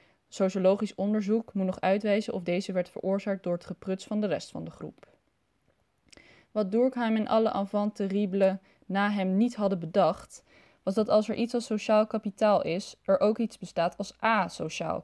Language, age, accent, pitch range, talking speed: Dutch, 20-39, Dutch, 190-220 Hz, 175 wpm